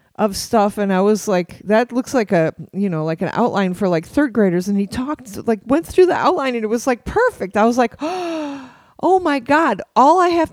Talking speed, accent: 235 wpm, American